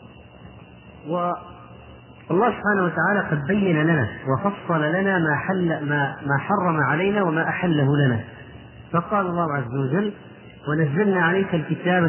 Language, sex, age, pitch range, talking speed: Arabic, male, 40-59, 145-185 Hz, 125 wpm